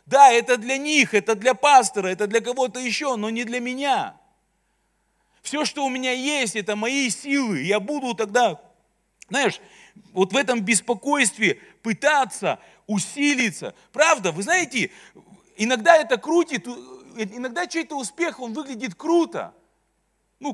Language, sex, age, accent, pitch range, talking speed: Russian, male, 40-59, native, 160-255 Hz, 135 wpm